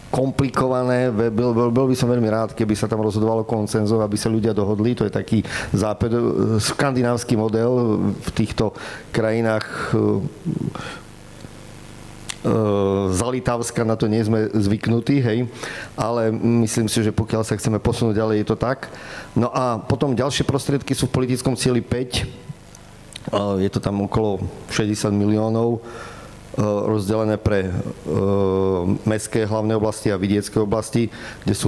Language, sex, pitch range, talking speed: Slovak, male, 100-115 Hz, 140 wpm